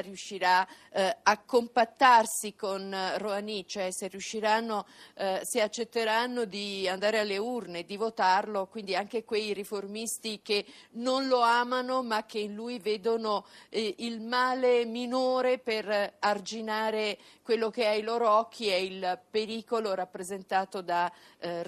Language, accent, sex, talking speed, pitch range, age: Italian, native, female, 135 wpm, 200-240 Hz, 50-69